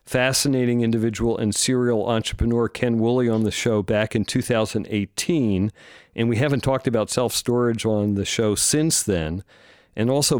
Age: 50-69